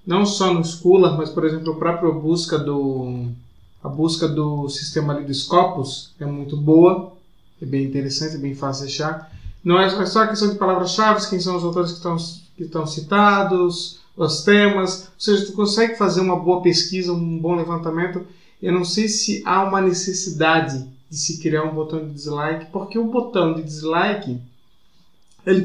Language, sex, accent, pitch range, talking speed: Portuguese, male, Brazilian, 155-190 Hz, 180 wpm